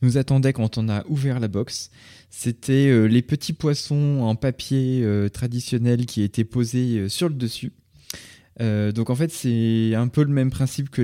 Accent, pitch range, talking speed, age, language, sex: French, 110-130 Hz, 170 wpm, 20-39, French, male